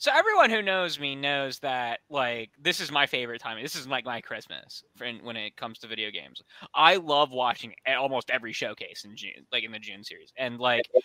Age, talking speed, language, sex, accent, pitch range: 20-39, 225 wpm, English, male, American, 115-155 Hz